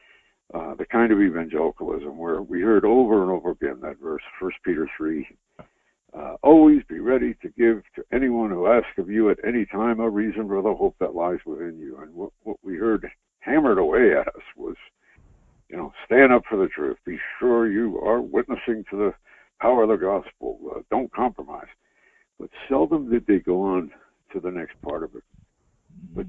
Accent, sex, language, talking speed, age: American, male, English, 190 wpm, 60-79